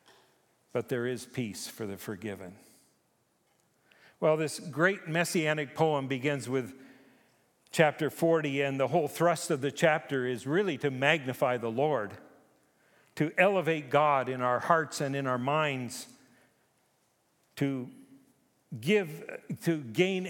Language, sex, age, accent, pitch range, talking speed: English, male, 50-69, American, 120-160 Hz, 125 wpm